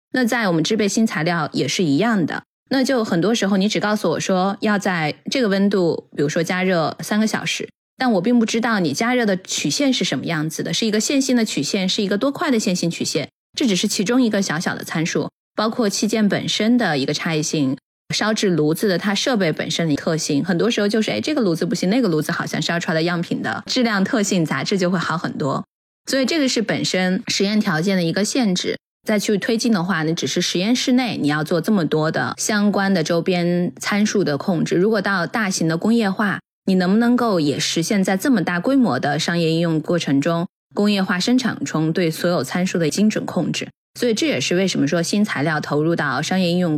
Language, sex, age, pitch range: Chinese, female, 20-39, 170-225 Hz